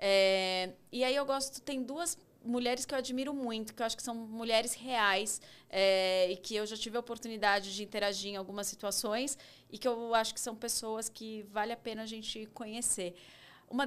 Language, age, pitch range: Portuguese, 30-49, 190-235 Hz